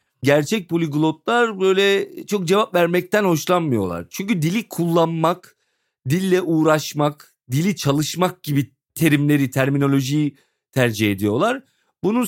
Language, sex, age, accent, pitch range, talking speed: Turkish, male, 40-59, native, 140-195 Hz, 100 wpm